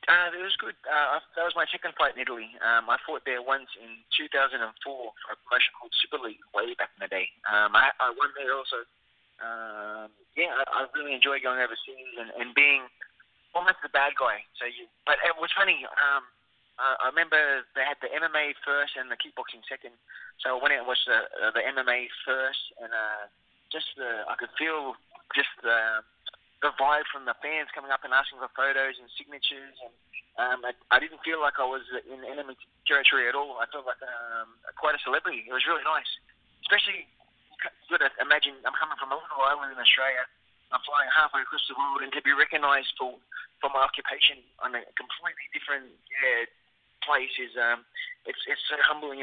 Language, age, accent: English, 20-39, Australian